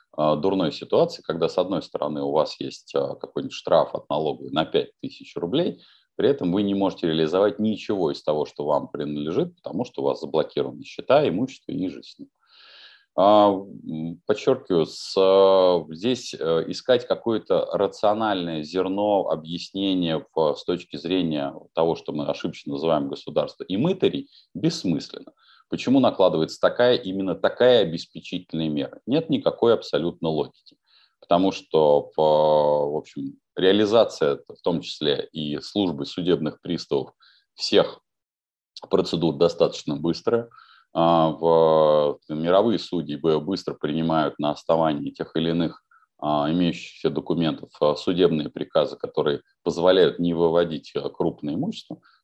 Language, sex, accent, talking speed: Russian, male, native, 120 wpm